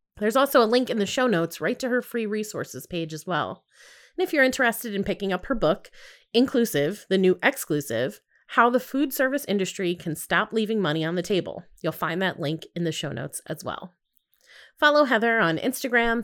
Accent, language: American, English